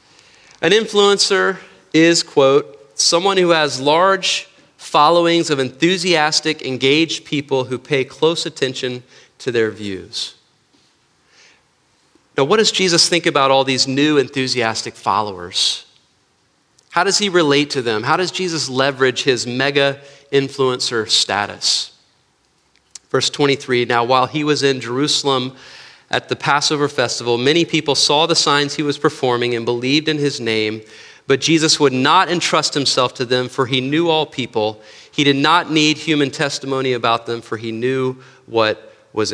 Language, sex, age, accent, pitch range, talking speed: English, male, 40-59, American, 130-170 Hz, 145 wpm